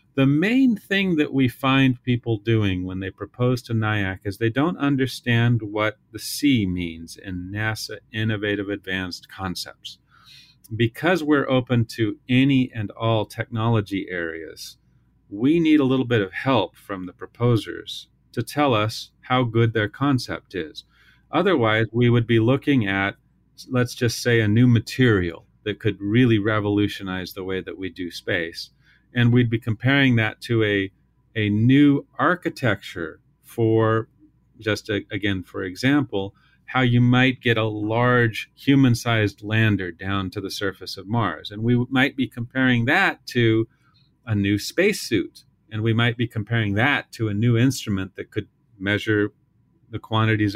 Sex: male